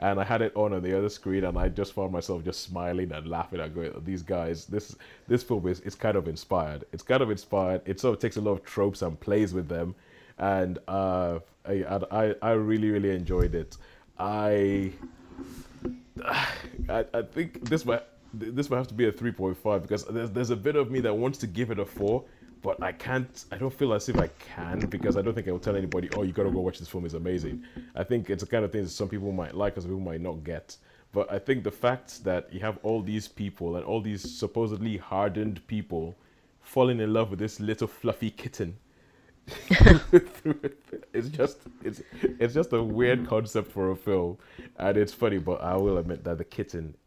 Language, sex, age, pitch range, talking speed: English, male, 20-39, 90-115 Hz, 220 wpm